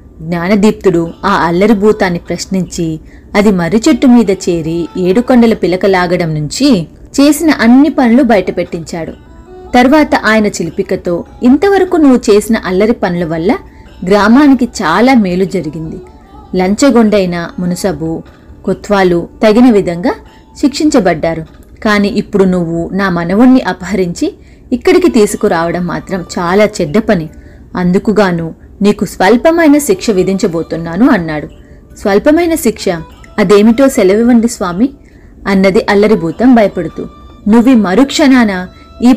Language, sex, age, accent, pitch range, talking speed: Telugu, female, 30-49, native, 180-240 Hz, 100 wpm